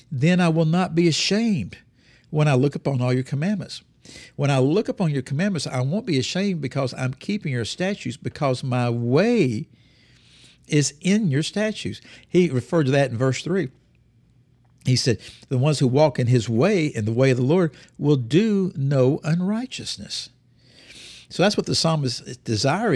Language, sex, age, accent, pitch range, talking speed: English, male, 60-79, American, 120-165 Hz, 175 wpm